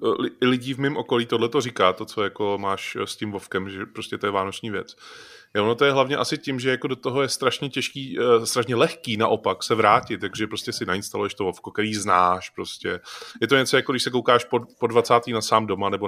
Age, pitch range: 20-39, 105-135 Hz